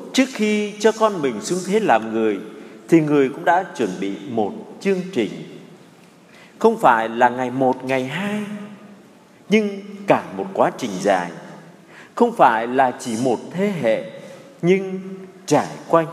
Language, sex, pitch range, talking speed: Vietnamese, male, 160-210 Hz, 155 wpm